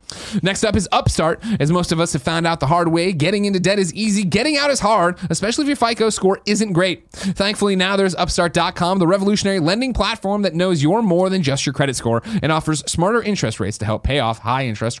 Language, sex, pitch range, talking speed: English, male, 130-200 Hz, 230 wpm